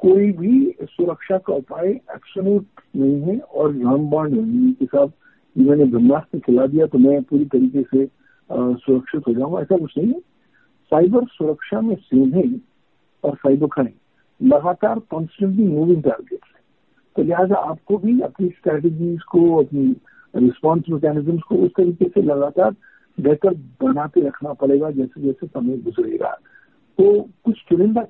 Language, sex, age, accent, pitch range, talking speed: Hindi, male, 50-69, native, 145-200 Hz, 145 wpm